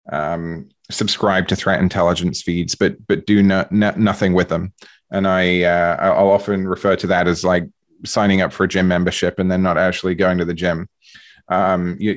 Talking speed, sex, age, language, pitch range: 195 wpm, male, 30-49, English, 90-105 Hz